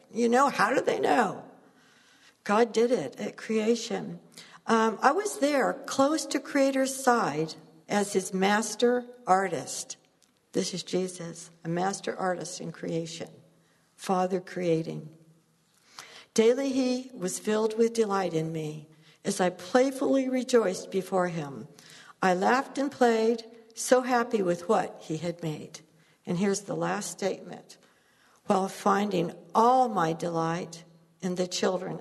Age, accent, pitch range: 60-79, American, 180-235 Hz